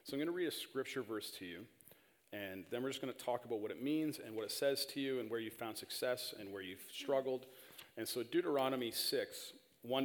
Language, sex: English, male